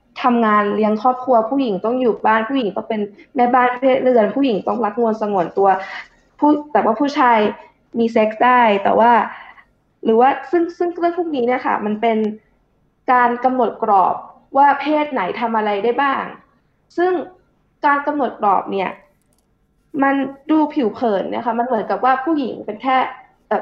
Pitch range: 220-275 Hz